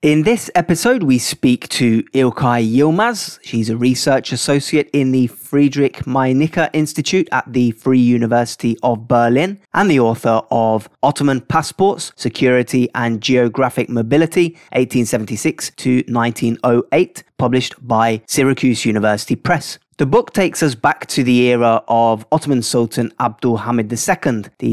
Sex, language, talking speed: male, English, 135 wpm